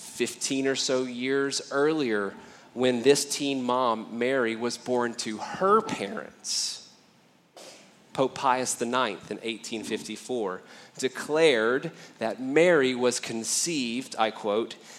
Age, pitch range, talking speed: 30-49, 115-140 Hz, 110 wpm